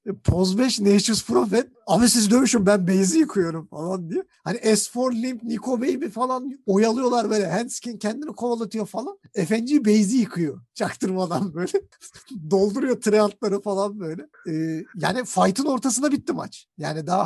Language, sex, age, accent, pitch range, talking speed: Turkish, male, 50-69, native, 165-235 Hz, 145 wpm